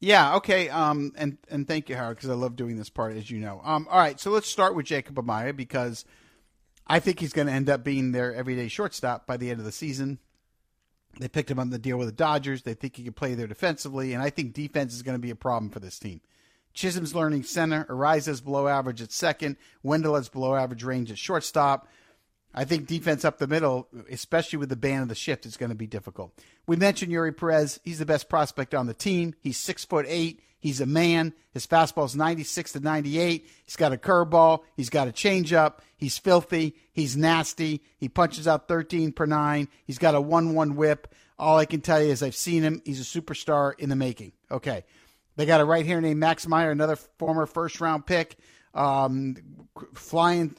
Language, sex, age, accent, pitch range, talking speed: English, male, 50-69, American, 130-165 Hz, 220 wpm